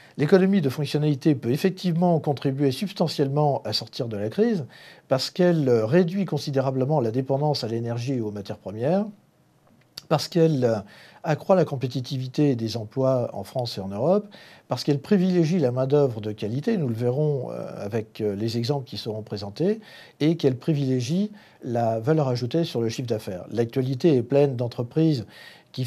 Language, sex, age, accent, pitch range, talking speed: French, male, 50-69, French, 115-155 Hz, 155 wpm